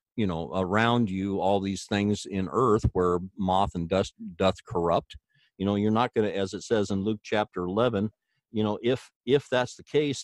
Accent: American